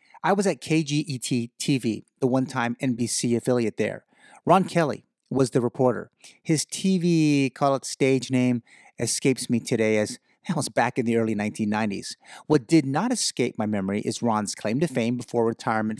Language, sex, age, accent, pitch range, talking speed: English, male, 30-49, American, 120-155 Hz, 170 wpm